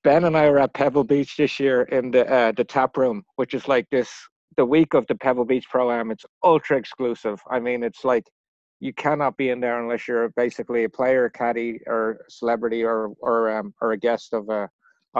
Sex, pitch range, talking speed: male, 115-140 Hz, 225 wpm